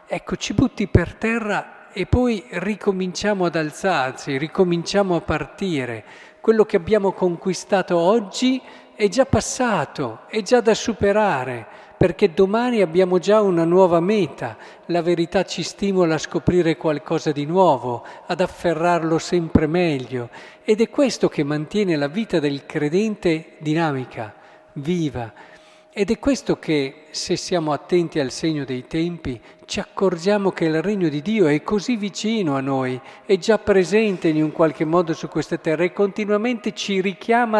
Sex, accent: male, native